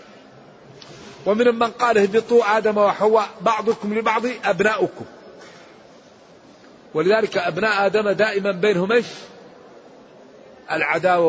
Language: Arabic